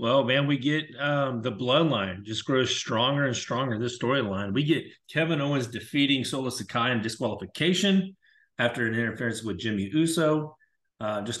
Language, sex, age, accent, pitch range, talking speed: English, male, 30-49, American, 110-150 Hz, 165 wpm